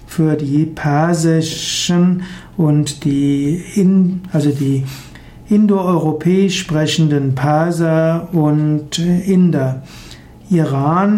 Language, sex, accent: German, male, German